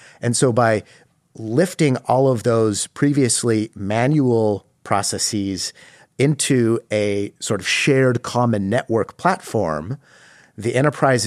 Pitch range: 110-130 Hz